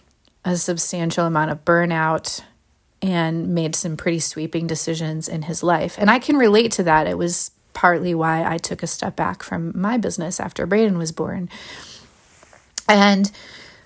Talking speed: 160 wpm